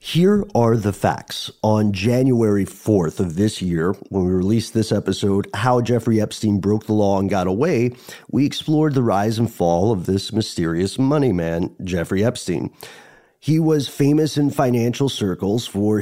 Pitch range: 100-140 Hz